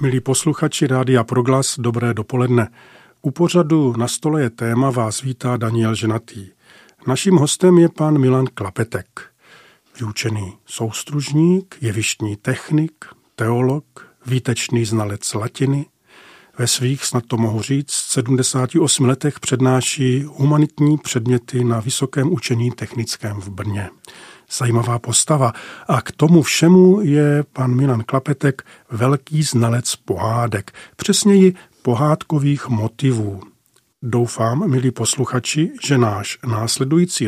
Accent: native